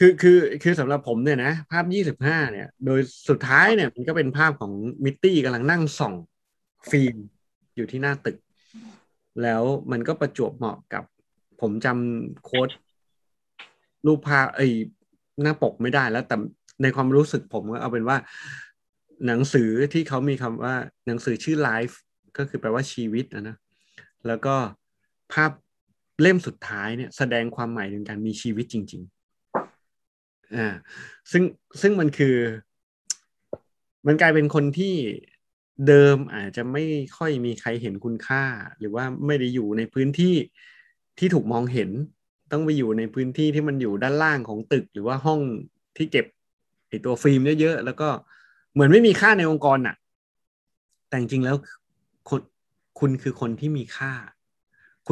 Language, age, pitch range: Thai, 20-39, 120-150 Hz